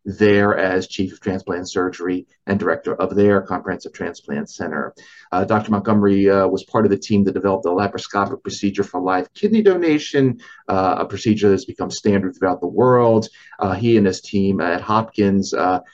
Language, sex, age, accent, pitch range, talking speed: English, male, 30-49, American, 95-110 Hz, 180 wpm